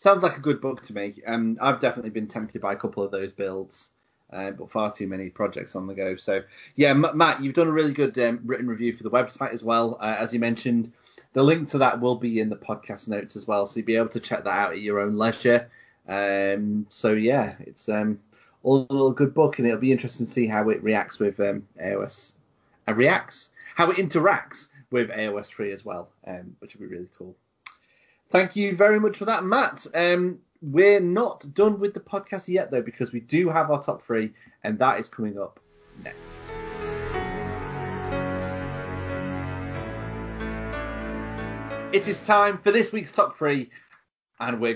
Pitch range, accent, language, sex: 105-145 Hz, British, English, male